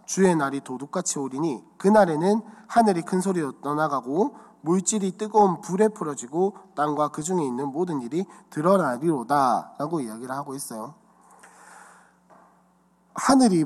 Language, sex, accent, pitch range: Korean, male, native, 150-200 Hz